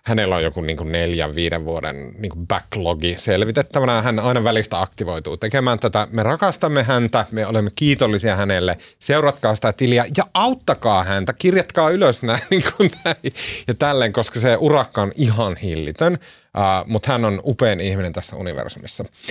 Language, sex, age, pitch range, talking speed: Finnish, male, 30-49, 95-130 Hz, 155 wpm